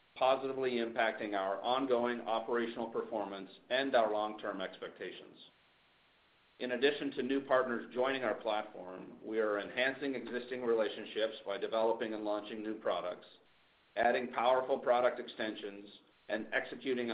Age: 50-69